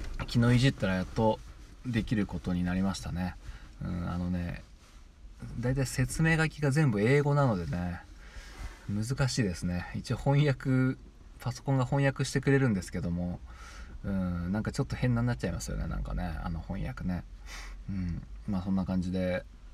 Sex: male